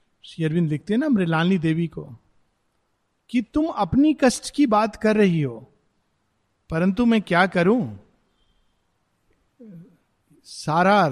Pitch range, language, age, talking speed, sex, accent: 150-215 Hz, Hindi, 50-69, 110 wpm, male, native